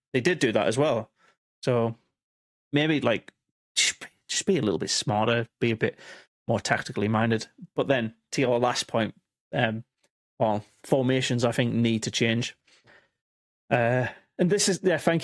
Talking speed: 160 wpm